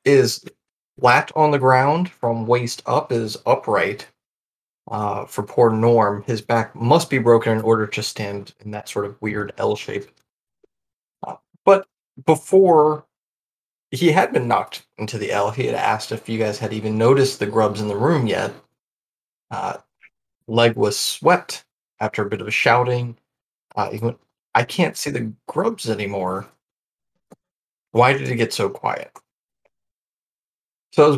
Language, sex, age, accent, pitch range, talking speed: English, male, 30-49, American, 110-145 Hz, 160 wpm